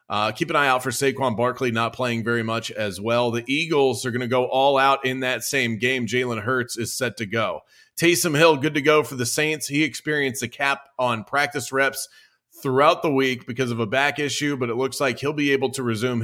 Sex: male